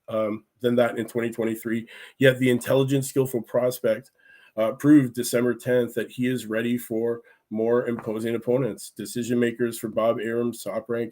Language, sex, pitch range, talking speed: English, male, 115-125 Hz, 150 wpm